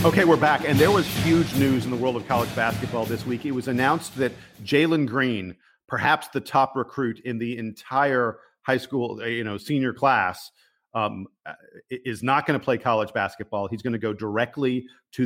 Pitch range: 115-130 Hz